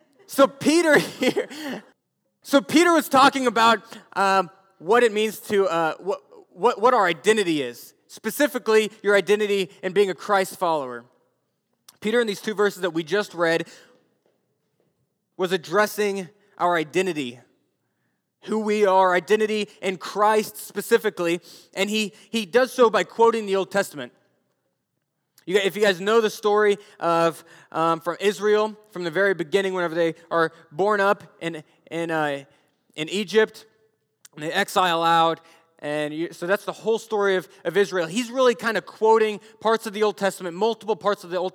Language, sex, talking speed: English, male, 160 wpm